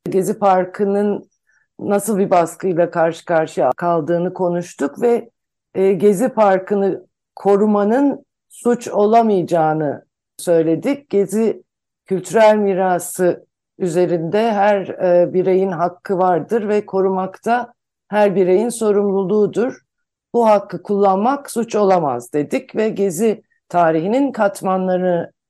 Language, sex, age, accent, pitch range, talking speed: Turkish, female, 60-79, native, 175-215 Hz, 90 wpm